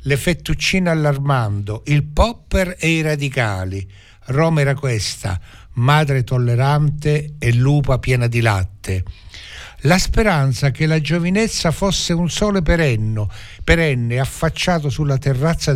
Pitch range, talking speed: 120-155 Hz, 115 wpm